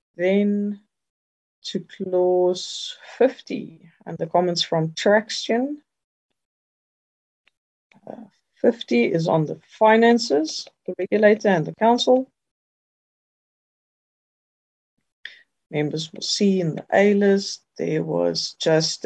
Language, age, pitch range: English, 50-69, 160-210 Hz